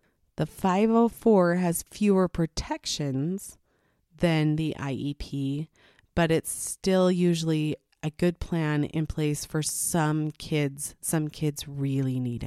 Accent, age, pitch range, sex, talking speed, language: American, 30-49, 140-170 Hz, female, 115 wpm, English